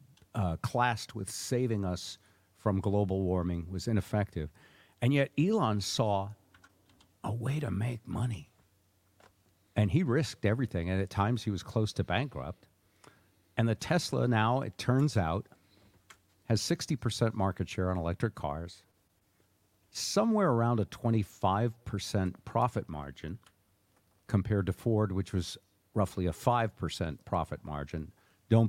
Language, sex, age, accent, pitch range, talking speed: English, male, 50-69, American, 90-115 Hz, 130 wpm